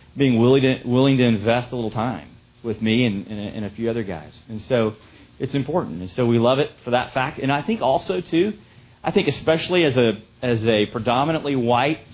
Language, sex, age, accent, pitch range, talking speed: English, male, 40-59, American, 110-135 Hz, 205 wpm